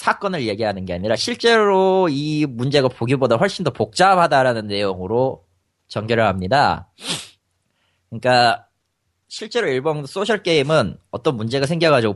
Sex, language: male, Korean